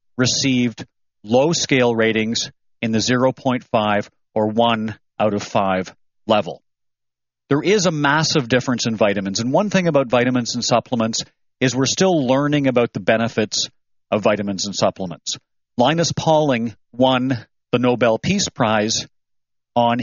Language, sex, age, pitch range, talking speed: English, male, 40-59, 105-130 Hz, 140 wpm